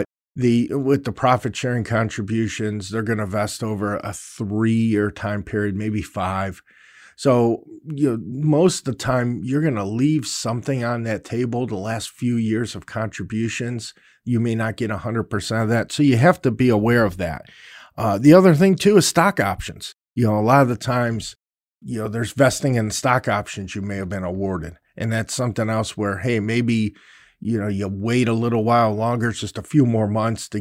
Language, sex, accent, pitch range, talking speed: English, male, American, 105-135 Hz, 200 wpm